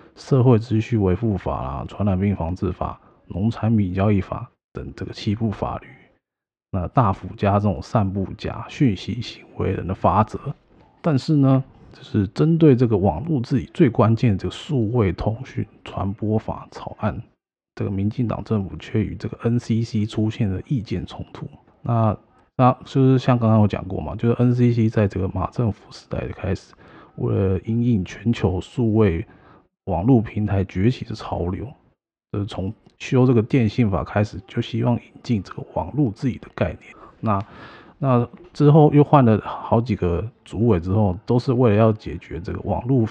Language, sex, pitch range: Chinese, male, 95-120 Hz